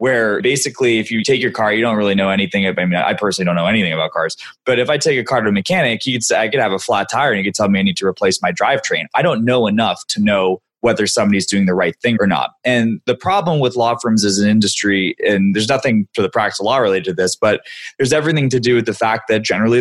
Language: English